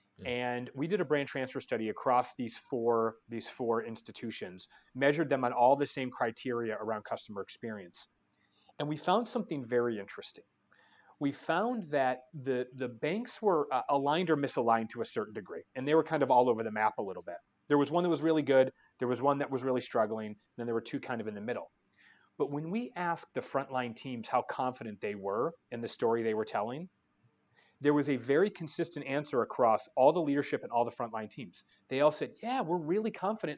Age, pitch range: 30-49, 120-160 Hz